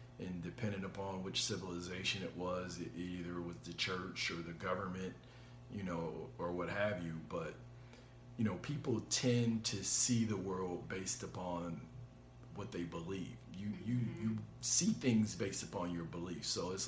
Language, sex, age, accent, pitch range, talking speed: English, male, 50-69, American, 90-120 Hz, 165 wpm